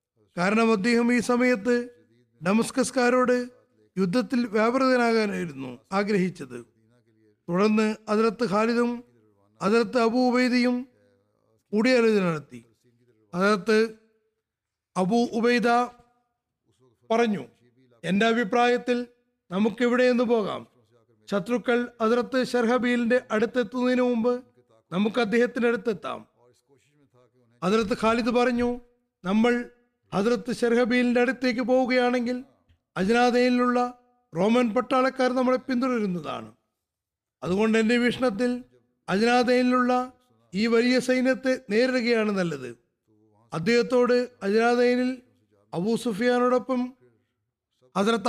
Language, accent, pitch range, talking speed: Malayalam, native, 160-245 Hz, 70 wpm